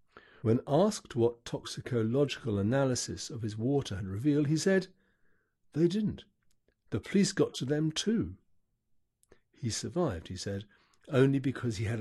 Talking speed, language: 140 wpm, English